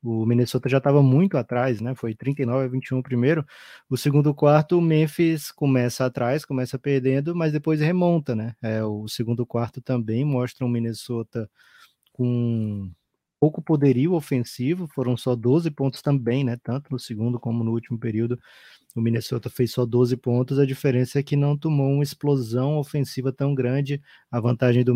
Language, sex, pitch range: Portuguese, male, 120-145 Hz